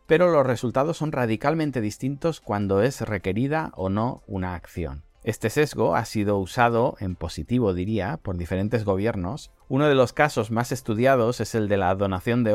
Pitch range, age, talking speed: 100-130 Hz, 30-49, 170 wpm